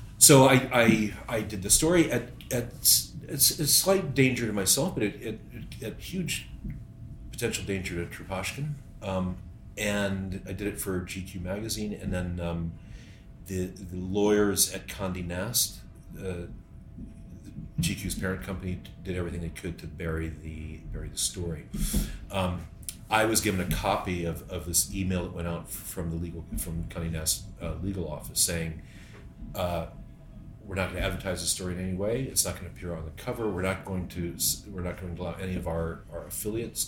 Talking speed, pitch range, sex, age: 175 wpm, 85-105 Hz, male, 40-59